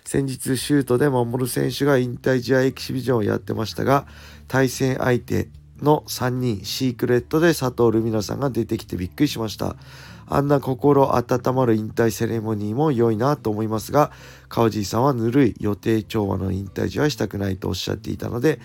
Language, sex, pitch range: Japanese, male, 105-130 Hz